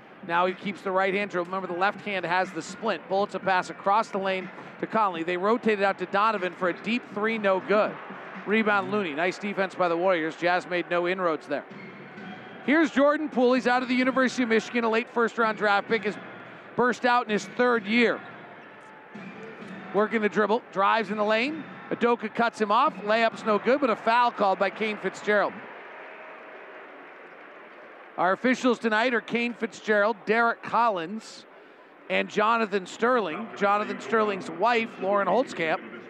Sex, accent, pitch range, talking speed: male, American, 190-230 Hz, 170 wpm